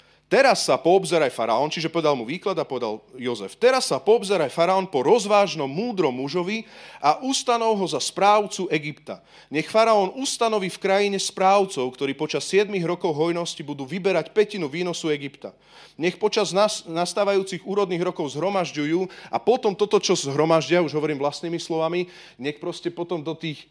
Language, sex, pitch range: Slovak, male, 130-190 Hz